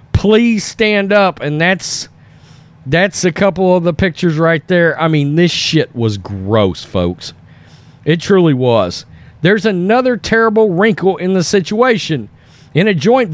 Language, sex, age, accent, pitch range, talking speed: English, male, 40-59, American, 140-190 Hz, 150 wpm